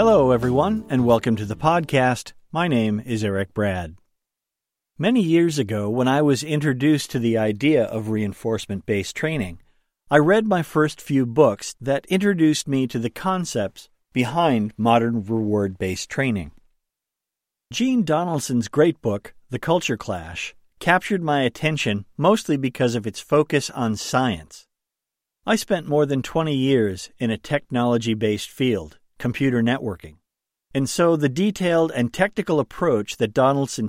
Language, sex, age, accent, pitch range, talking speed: English, male, 50-69, American, 110-155 Hz, 140 wpm